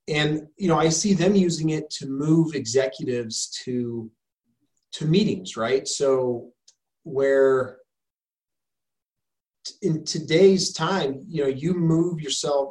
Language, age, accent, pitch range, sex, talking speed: English, 30-49, American, 125-170 Hz, male, 125 wpm